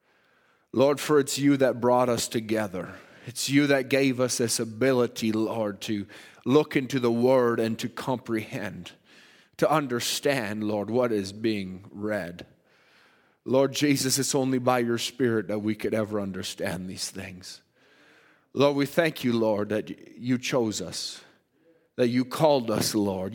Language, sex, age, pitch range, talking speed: English, male, 30-49, 105-130 Hz, 150 wpm